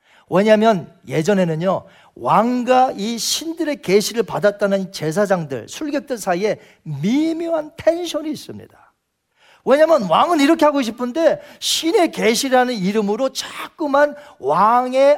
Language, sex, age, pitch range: Korean, male, 40-59, 200-295 Hz